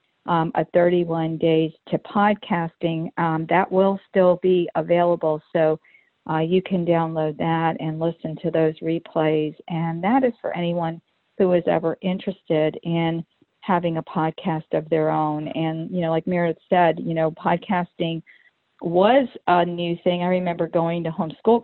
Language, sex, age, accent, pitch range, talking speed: English, female, 50-69, American, 165-195 Hz, 160 wpm